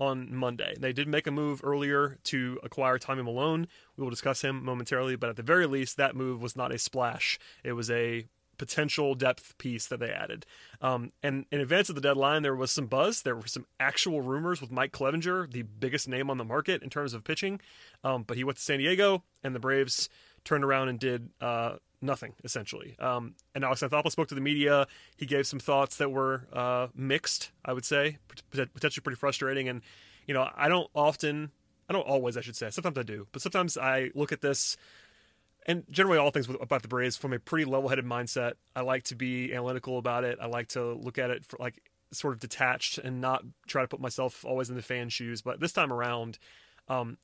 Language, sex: English, male